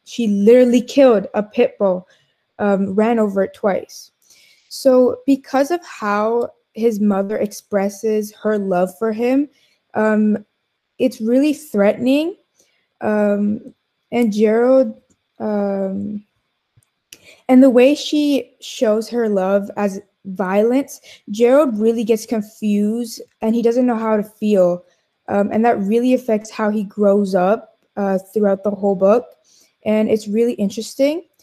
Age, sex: 20-39, female